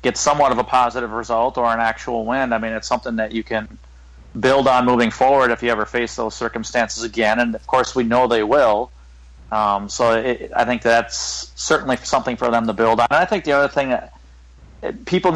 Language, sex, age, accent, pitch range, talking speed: English, male, 30-49, American, 110-125 Hz, 220 wpm